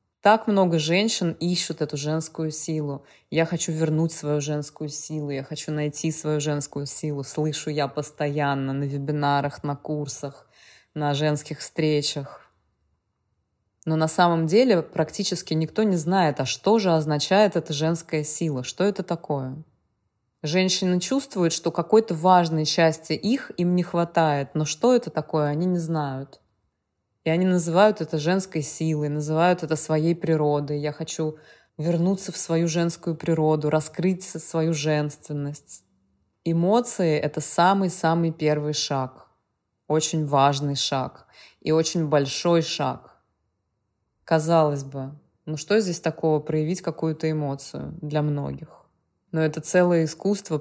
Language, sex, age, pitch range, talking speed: Russian, female, 20-39, 145-170 Hz, 130 wpm